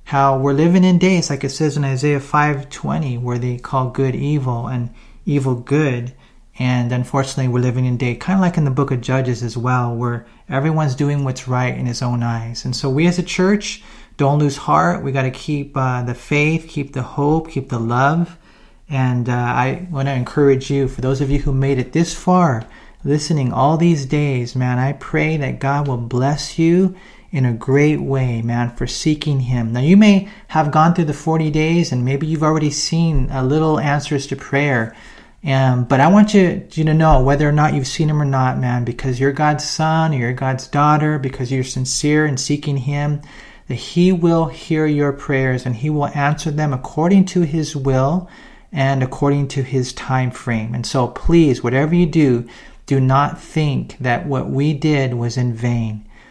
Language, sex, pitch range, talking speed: English, male, 125-155 Hz, 200 wpm